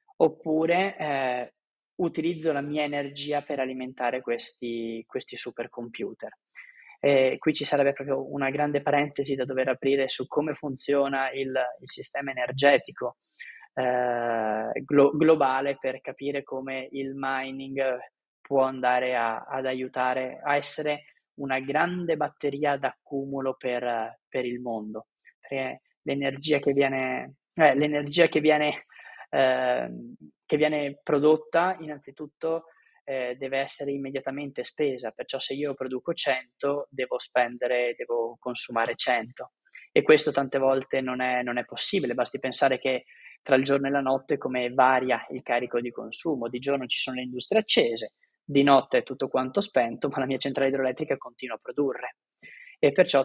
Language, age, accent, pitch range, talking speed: Italian, 20-39, native, 125-145 Hz, 140 wpm